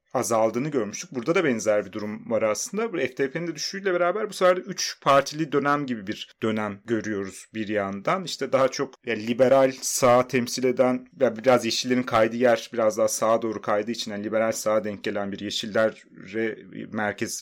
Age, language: 30-49, Turkish